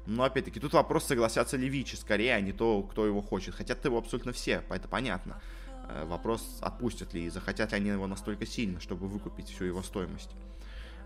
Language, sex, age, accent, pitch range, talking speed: Russian, male, 20-39, native, 95-115 Hz, 190 wpm